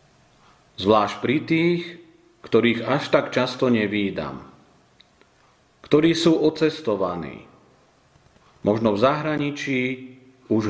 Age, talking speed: 40-59, 85 wpm